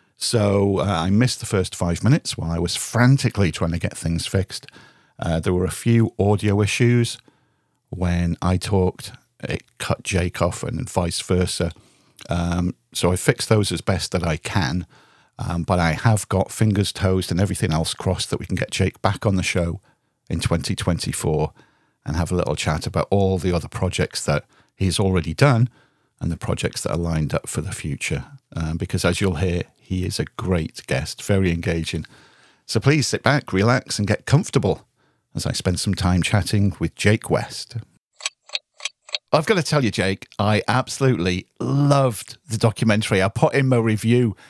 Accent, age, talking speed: British, 50-69, 180 wpm